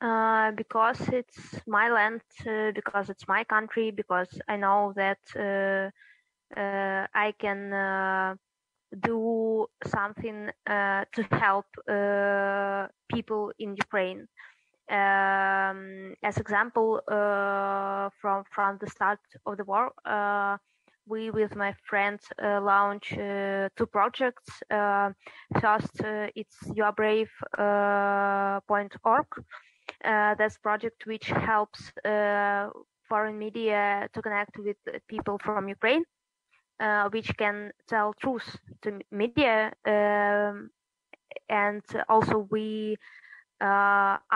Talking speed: 115 wpm